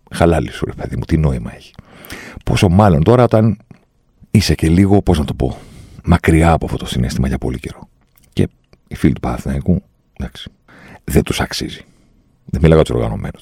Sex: male